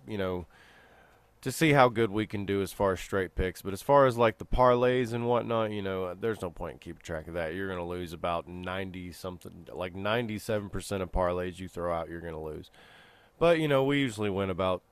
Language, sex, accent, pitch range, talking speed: English, male, American, 90-110 Hz, 235 wpm